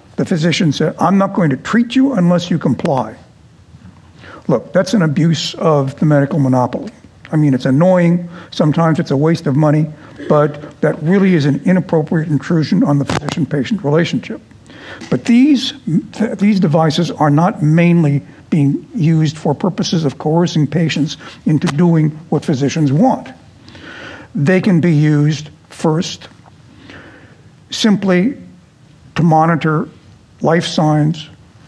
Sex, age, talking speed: male, 60-79, 135 wpm